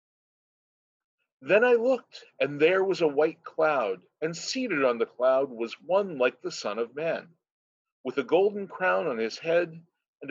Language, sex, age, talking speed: English, male, 40-59, 170 wpm